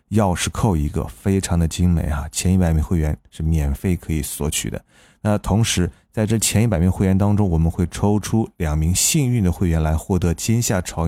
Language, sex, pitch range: Chinese, male, 80-100 Hz